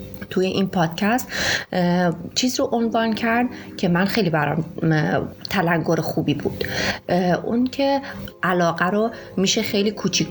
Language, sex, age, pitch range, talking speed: Persian, female, 30-49, 165-200 Hz, 120 wpm